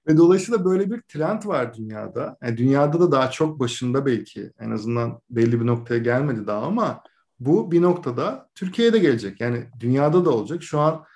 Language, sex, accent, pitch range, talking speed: Turkish, male, native, 120-165 Hz, 185 wpm